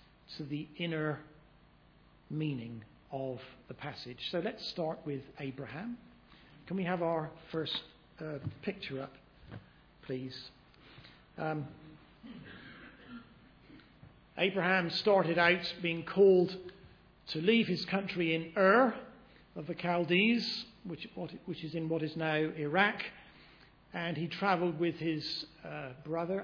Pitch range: 155-190 Hz